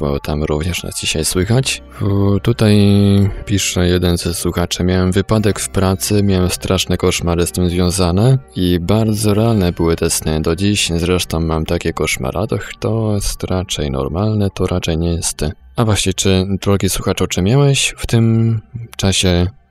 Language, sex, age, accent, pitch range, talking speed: Polish, male, 20-39, native, 85-100 Hz, 165 wpm